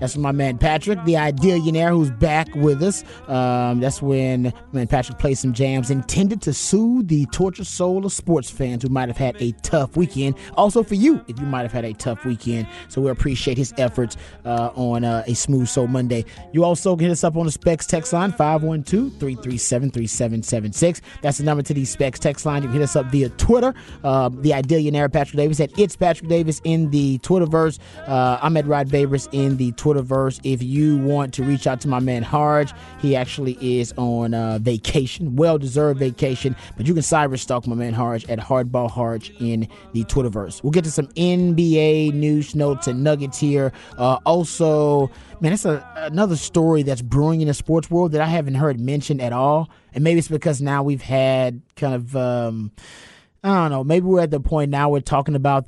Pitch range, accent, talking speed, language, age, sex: 125-155 Hz, American, 205 wpm, English, 30-49, male